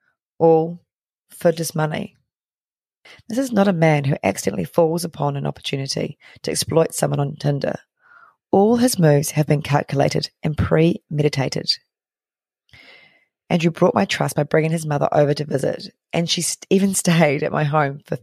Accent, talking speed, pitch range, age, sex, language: Australian, 155 wpm, 145-170 Hz, 30-49, female, English